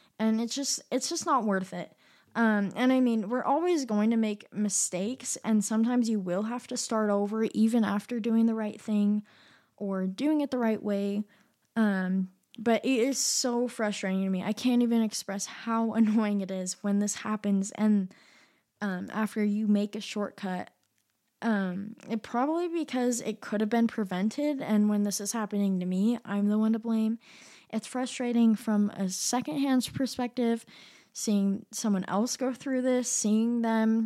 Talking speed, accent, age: 175 wpm, American, 20-39